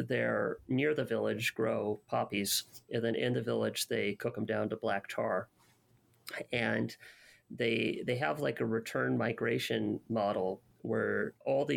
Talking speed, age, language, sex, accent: 155 wpm, 30-49, English, male, American